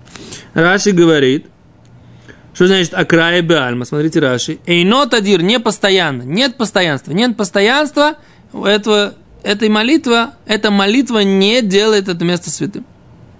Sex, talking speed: male, 120 wpm